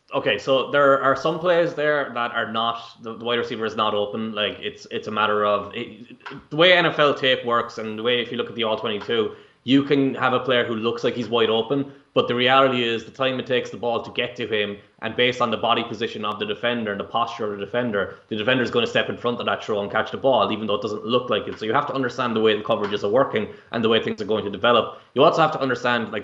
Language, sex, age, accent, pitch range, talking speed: English, male, 20-39, Irish, 110-135 Hz, 290 wpm